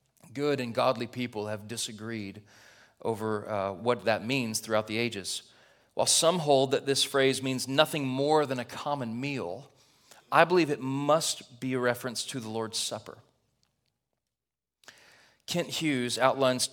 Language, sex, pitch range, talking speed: English, male, 120-145 Hz, 145 wpm